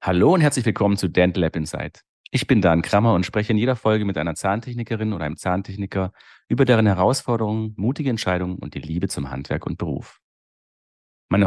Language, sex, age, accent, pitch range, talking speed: German, male, 40-59, German, 90-110 Hz, 190 wpm